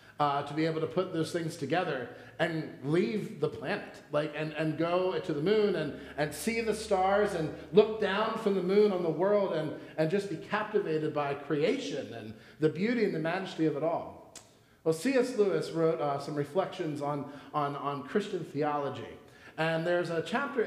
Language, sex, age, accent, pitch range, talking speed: English, male, 40-59, American, 155-210 Hz, 190 wpm